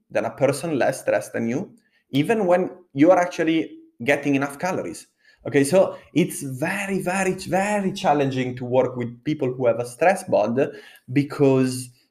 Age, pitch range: 20-39, 125-165 Hz